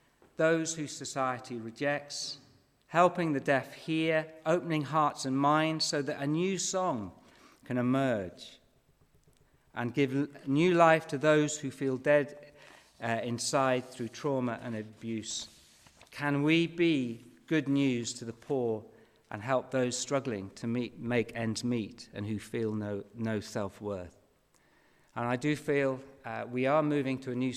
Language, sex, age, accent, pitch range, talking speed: English, male, 50-69, British, 115-145 Hz, 150 wpm